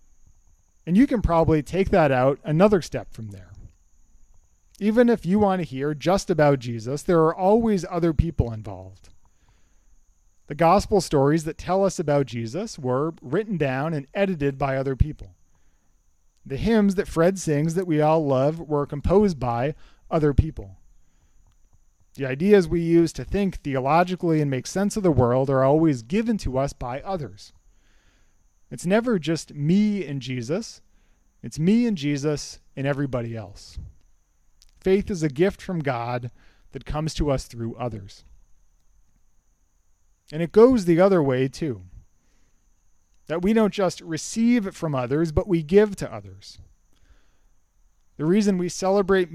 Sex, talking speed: male, 150 wpm